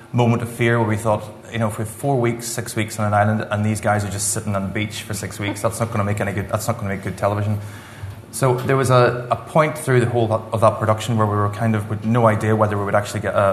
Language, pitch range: English, 105-115 Hz